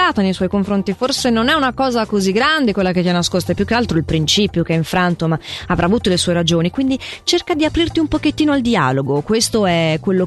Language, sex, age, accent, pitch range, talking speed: Italian, female, 30-49, native, 170-235 Hz, 240 wpm